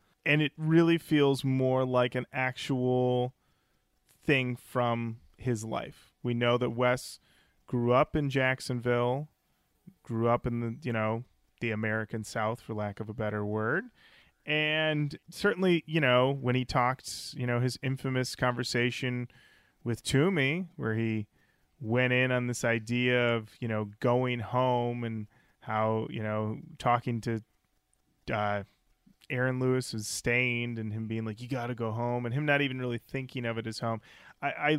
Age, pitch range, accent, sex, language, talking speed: 30-49, 115-135 Hz, American, male, English, 160 wpm